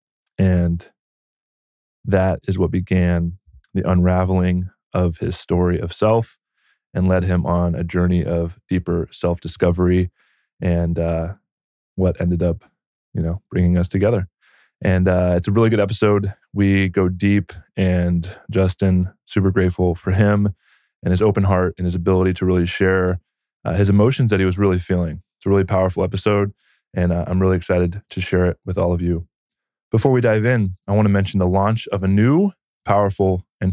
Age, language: 20-39, English